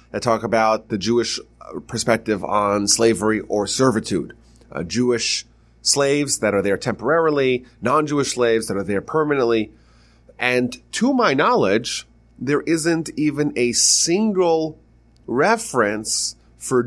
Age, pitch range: 30-49, 105-125 Hz